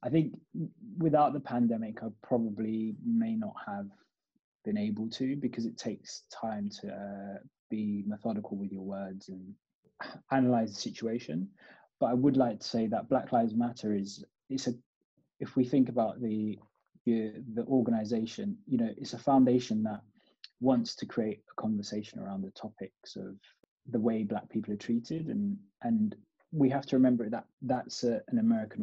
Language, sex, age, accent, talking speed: English, male, 20-39, British, 165 wpm